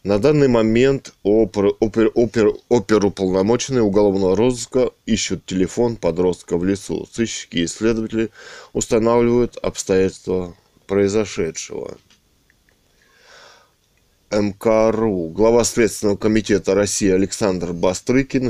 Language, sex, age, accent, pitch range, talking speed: Russian, male, 20-39, native, 95-115 Hz, 80 wpm